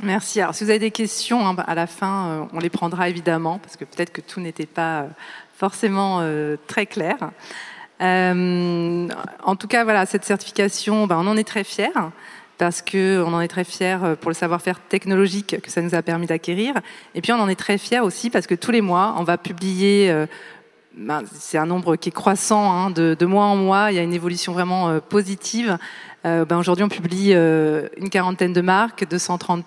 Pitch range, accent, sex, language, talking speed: 170-205 Hz, French, female, French, 205 wpm